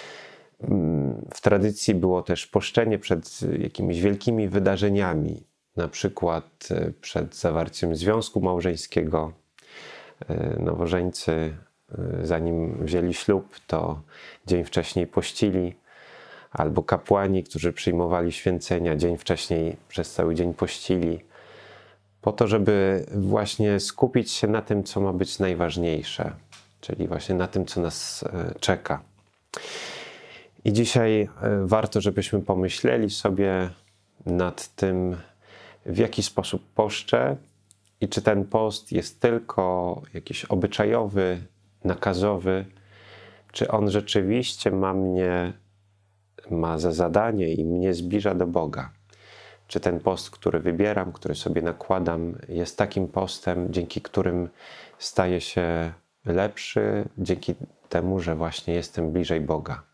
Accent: native